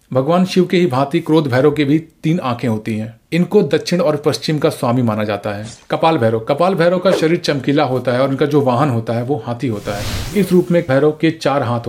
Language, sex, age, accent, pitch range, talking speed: Hindi, male, 40-59, native, 125-165 Hz, 240 wpm